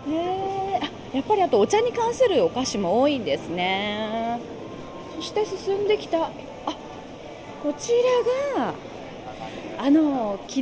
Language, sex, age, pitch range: Japanese, female, 30-49, 260-385 Hz